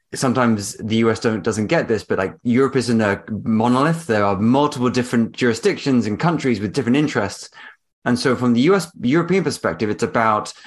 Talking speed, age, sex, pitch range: 185 wpm, 20-39, male, 105-125 Hz